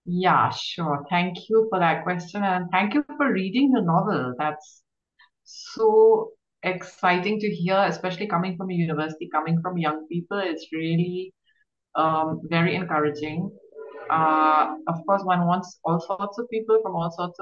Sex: female